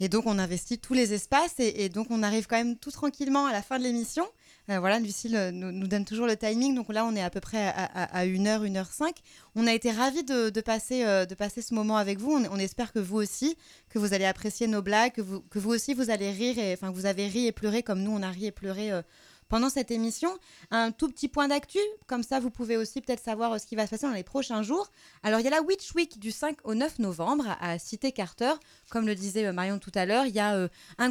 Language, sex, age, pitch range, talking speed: French, female, 30-49, 200-245 Hz, 270 wpm